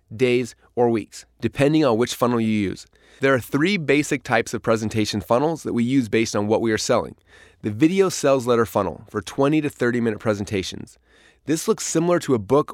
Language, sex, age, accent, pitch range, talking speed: English, male, 30-49, American, 115-150 Hz, 205 wpm